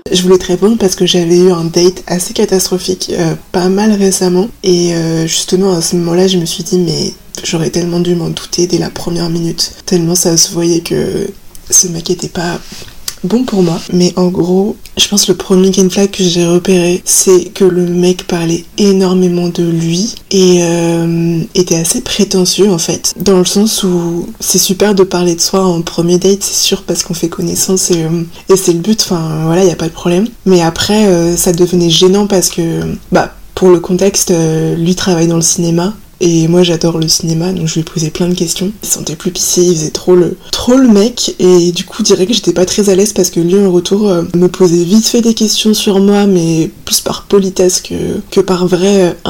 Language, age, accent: French, 20-39, French